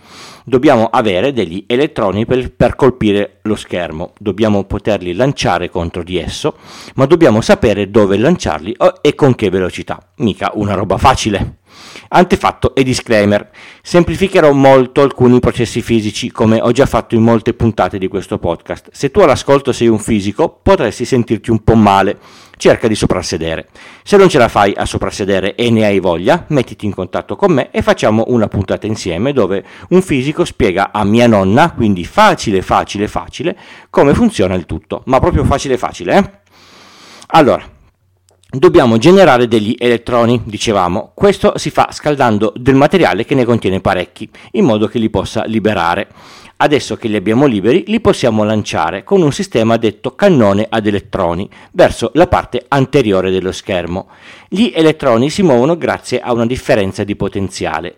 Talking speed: 160 wpm